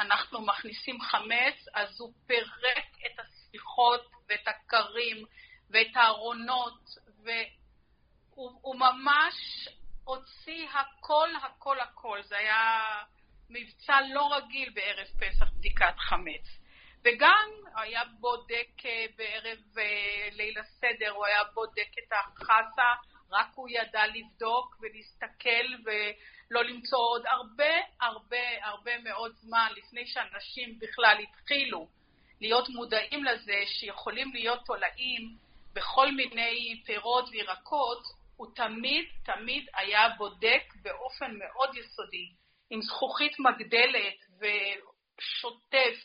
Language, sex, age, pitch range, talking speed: Hebrew, female, 50-69, 215-260 Hz, 100 wpm